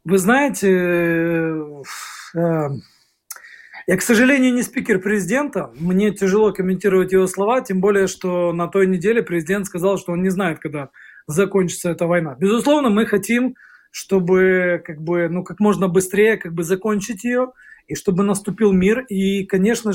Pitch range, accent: 185-220 Hz, native